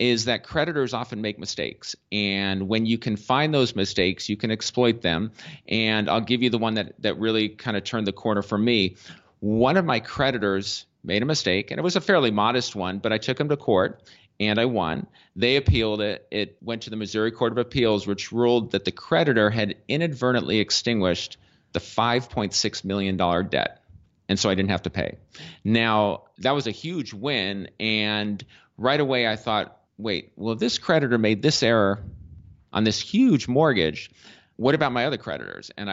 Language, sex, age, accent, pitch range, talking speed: English, male, 40-59, American, 105-125 Hz, 190 wpm